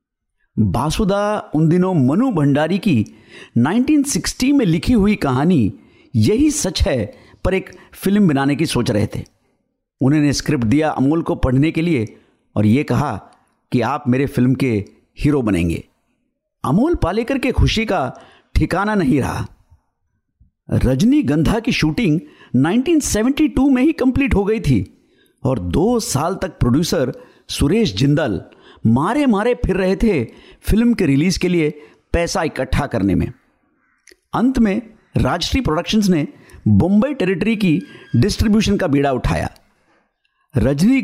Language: Hindi